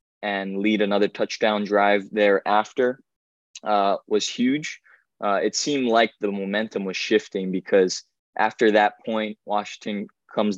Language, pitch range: English, 95-105 Hz